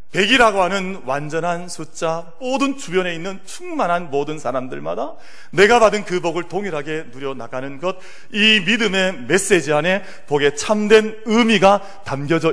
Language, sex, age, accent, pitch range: Korean, male, 40-59, native, 135-205 Hz